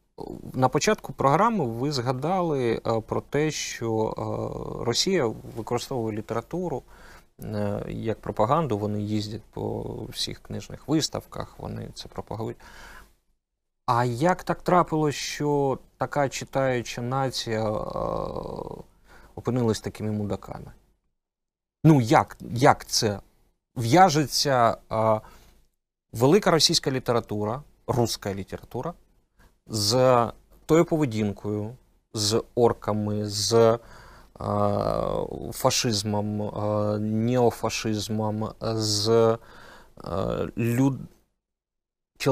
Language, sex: Ukrainian, male